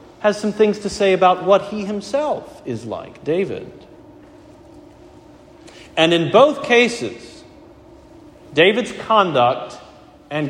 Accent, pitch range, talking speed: American, 125-210 Hz, 110 wpm